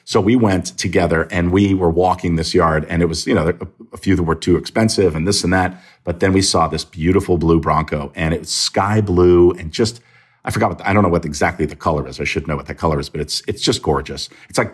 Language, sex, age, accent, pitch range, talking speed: English, male, 50-69, American, 90-110 Hz, 275 wpm